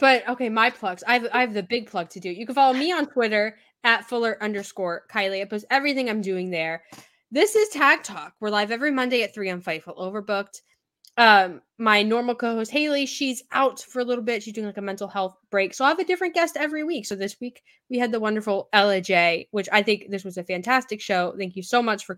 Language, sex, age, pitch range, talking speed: English, female, 10-29, 200-270 Hz, 245 wpm